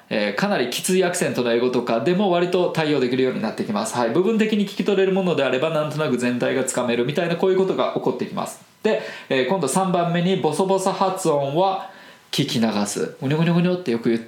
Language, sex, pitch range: Japanese, male, 130-195 Hz